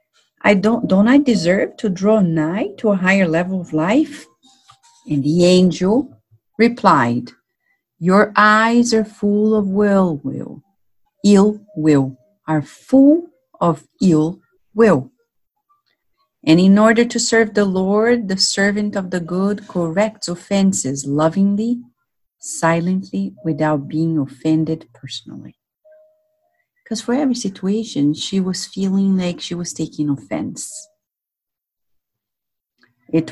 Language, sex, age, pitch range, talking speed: English, female, 50-69, 155-225 Hz, 115 wpm